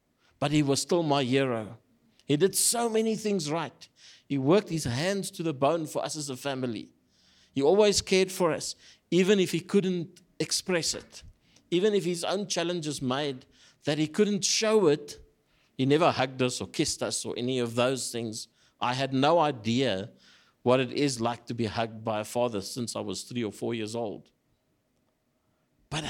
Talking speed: 185 wpm